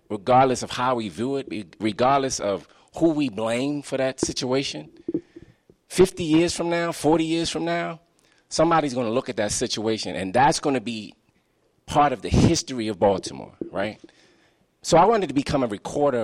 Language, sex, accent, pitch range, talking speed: English, male, American, 110-135 Hz, 170 wpm